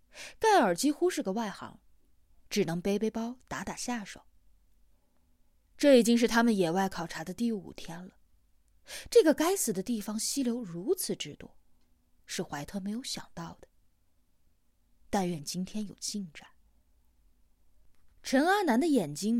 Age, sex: 20-39, female